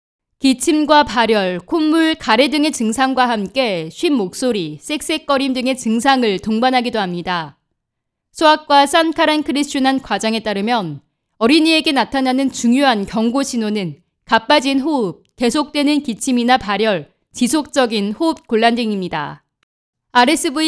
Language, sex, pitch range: Korean, female, 220-290 Hz